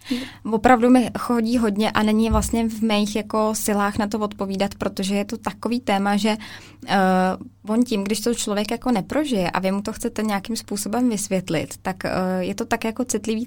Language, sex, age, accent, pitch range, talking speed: Czech, female, 20-39, native, 190-225 Hz, 180 wpm